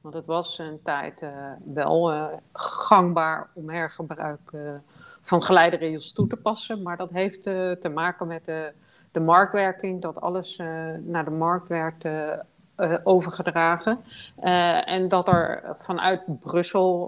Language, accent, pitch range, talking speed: Dutch, Dutch, 160-185 Hz, 150 wpm